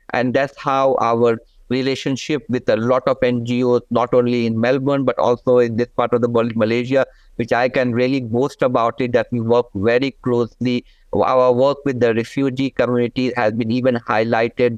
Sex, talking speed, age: male, 185 wpm, 50-69